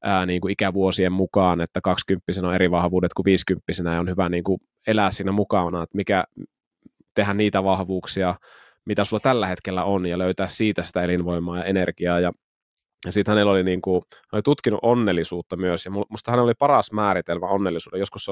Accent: native